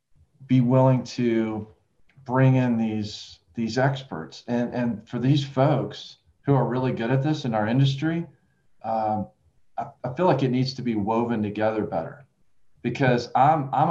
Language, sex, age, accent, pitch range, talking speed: English, male, 40-59, American, 110-135 Hz, 160 wpm